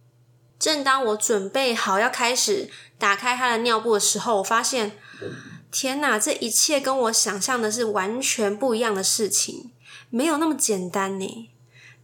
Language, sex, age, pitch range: Chinese, female, 20-39, 195-255 Hz